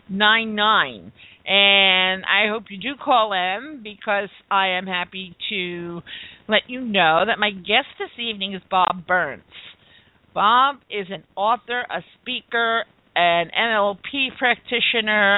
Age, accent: 50-69, American